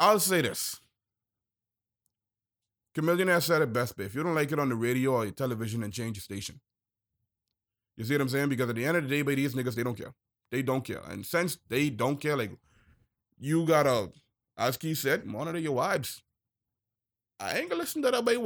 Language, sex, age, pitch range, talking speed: English, male, 30-49, 115-175 Hz, 210 wpm